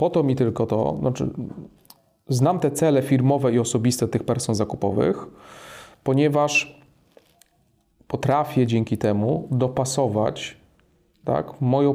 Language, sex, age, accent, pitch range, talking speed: Polish, male, 30-49, native, 115-145 Hz, 100 wpm